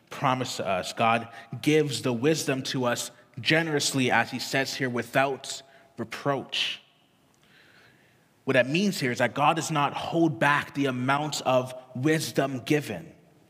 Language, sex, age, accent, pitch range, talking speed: English, male, 20-39, American, 125-155 Hz, 140 wpm